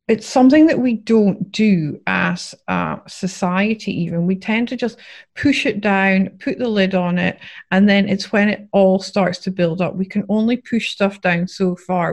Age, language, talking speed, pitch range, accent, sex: 30-49, English, 200 wpm, 185-225 Hz, British, female